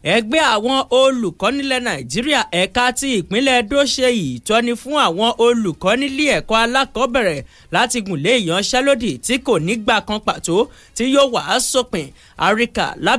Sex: male